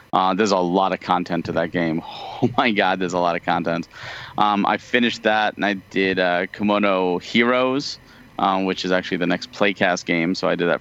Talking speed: 215 wpm